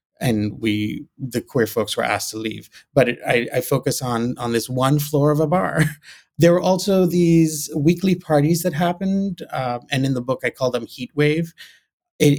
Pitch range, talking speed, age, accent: 120-155 Hz, 200 wpm, 30-49, American